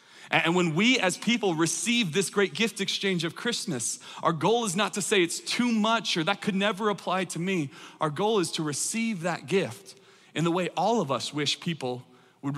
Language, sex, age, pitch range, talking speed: English, male, 30-49, 145-210 Hz, 210 wpm